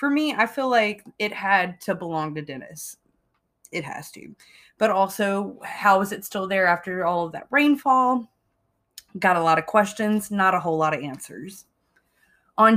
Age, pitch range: 20-39, 175-230 Hz